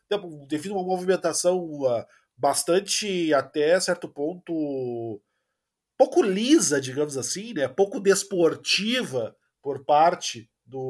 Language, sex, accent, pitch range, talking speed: Portuguese, male, Brazilian, 150-195 Hz, 100 wpm